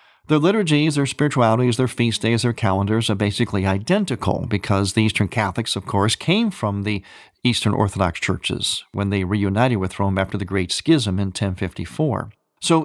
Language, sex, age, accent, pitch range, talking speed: English, male, 50-69, American, 105-135 Hz, 170 wpm